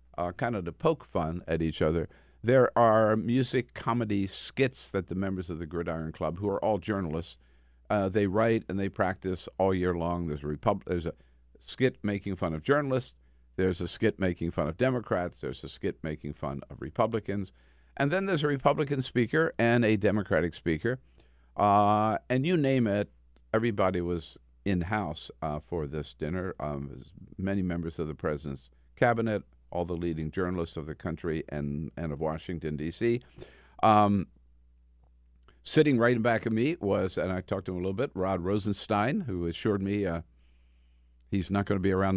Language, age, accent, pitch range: English, 50-69, American, 75-110 Hz